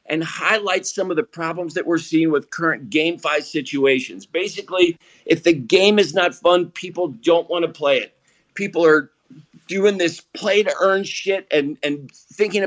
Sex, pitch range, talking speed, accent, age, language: male, 155-205 Hz, 180 wpm, American, 50-69, English